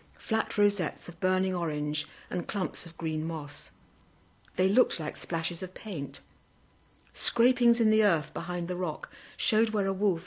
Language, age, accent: English, 60-79, British